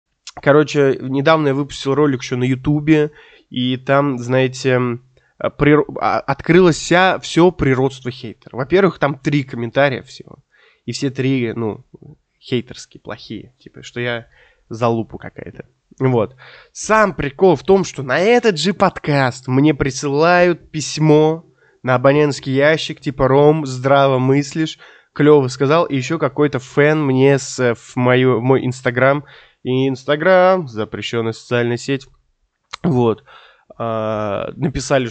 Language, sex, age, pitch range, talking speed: Russian, male, 20-39, 125-150 Hz, 120 wpm